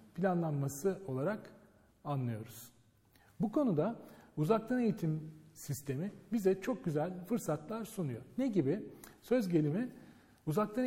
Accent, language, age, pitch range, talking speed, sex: native, Turkish, 40-59, 140-215 Hz, 100 wpm, male